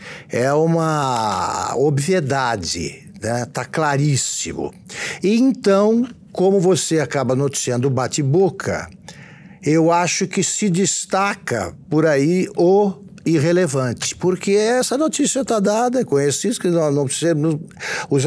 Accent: Brazilian